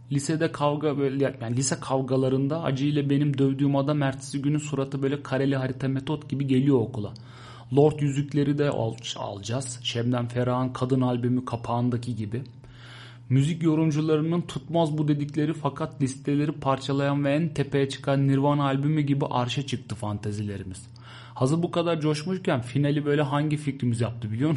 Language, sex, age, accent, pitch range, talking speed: Turkish, male, 30-49, native, 120-145 Hz, 140 wpm